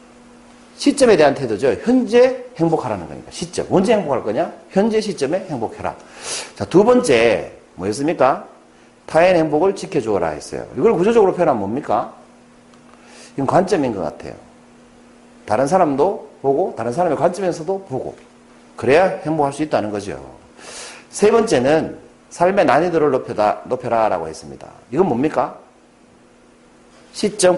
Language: Korean